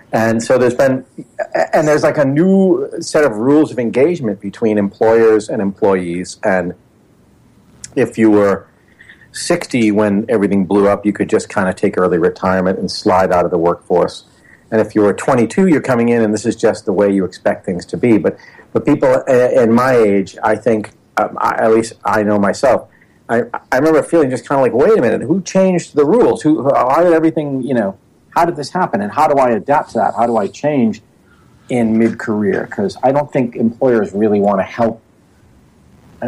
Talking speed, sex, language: 205 wpm, male, English